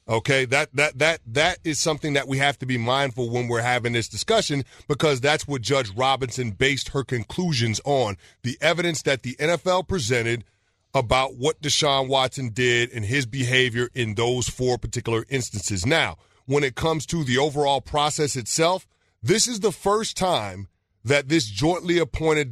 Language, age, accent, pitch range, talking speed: English, 40-59, American, 125-160 Hz, 170 wpm